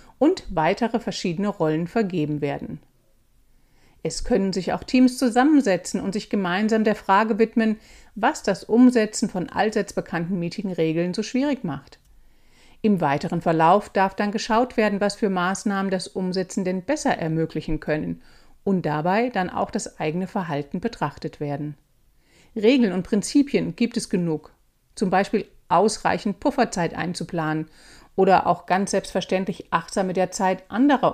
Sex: female